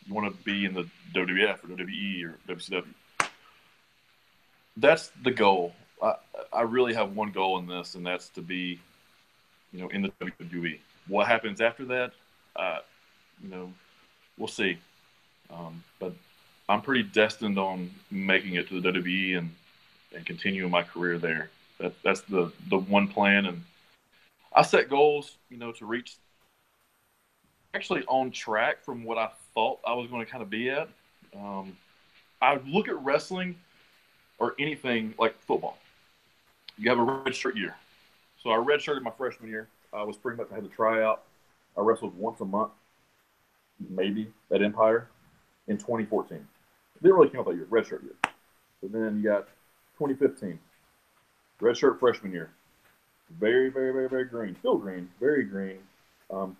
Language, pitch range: English, 95-125 Hz